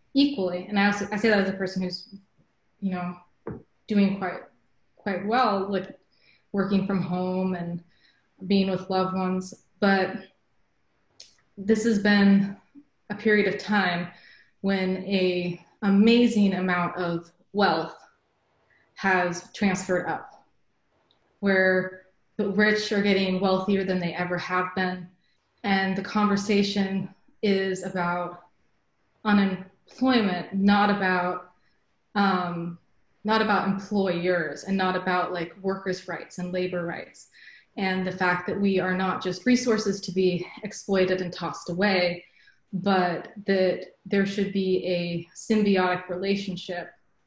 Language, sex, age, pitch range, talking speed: English, female, 20-39, 180-200 Hz, 125 wpm